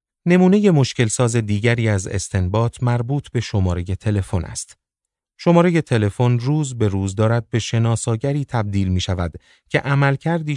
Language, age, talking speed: Persian, 30-49, 130 wpm